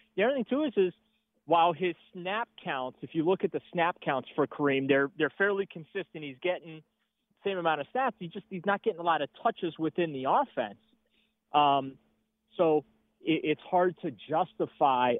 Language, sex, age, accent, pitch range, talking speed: English, male, 30-49, American, 140-180 Hz, 195 wpm